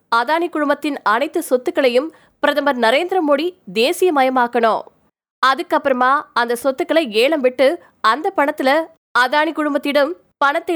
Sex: female